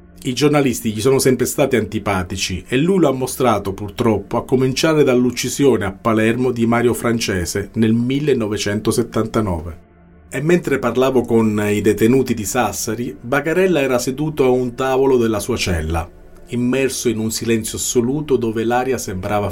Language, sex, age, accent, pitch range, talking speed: Italian, male, 40-59, native, 100-125 Hz, 150 wpm